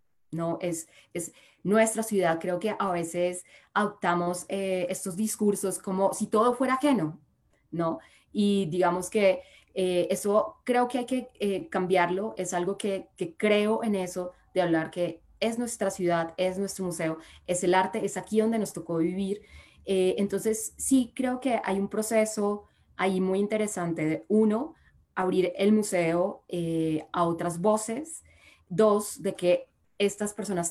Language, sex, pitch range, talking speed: Spanish, female, 170-210 Hz, 155 wpm